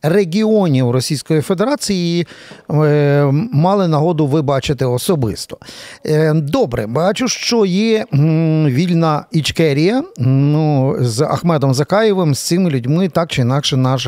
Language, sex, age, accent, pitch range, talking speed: Ukrainian, male, 50-69, native, 135-195 Hz, 100 wpm